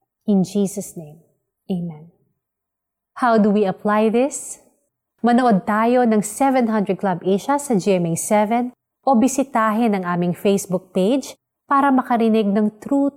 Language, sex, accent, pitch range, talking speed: Filipino, female, native, 180-230 Hz, 125 wpm